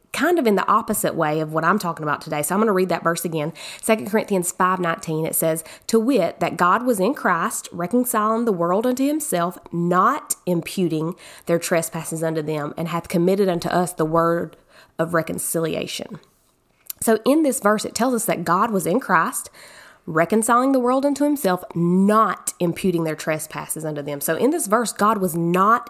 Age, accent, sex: 20-39, American, female